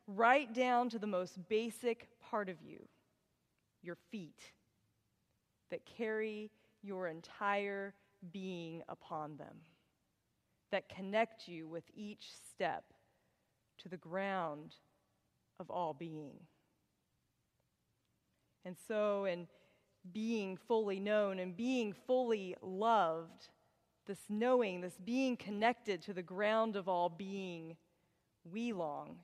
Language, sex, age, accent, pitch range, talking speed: English, female, 30-49, American, 175-215 Hz, 110 wpm